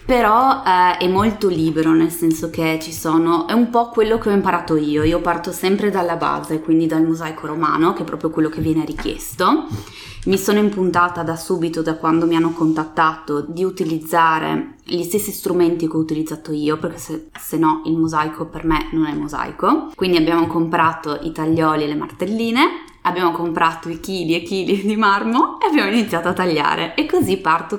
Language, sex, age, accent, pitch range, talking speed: Italian, female, 20-39, native, 160-195 Hz, 190 wpm